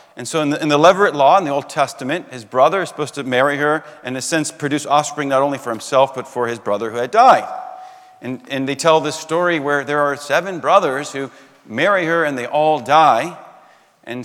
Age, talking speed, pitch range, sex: 40-59, 230 wpm, 135-175 Hz, male